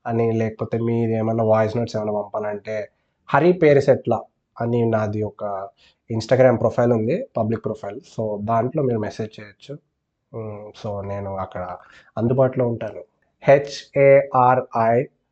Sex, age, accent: male, 20-39, native